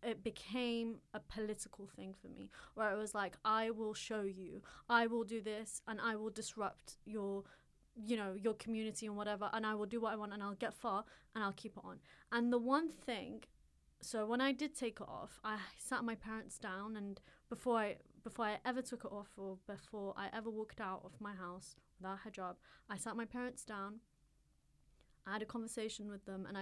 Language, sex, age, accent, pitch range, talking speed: English, female, 20-39, British, 195-225 Hz, 210 wpm